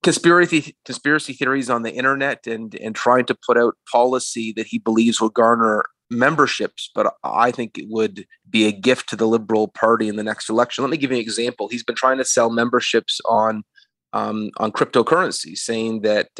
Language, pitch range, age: English, 110-125 Hz, 30-49